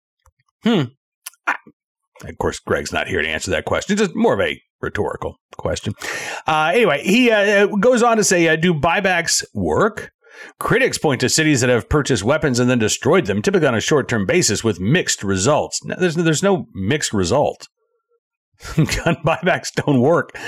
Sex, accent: male, American